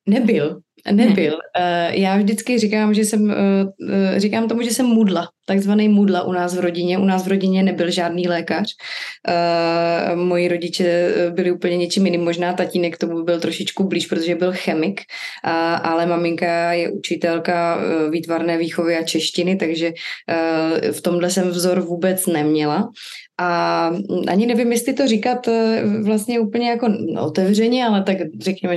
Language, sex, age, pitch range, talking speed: Slovak, female, 20-39, 170-195 Hz, 145 wpm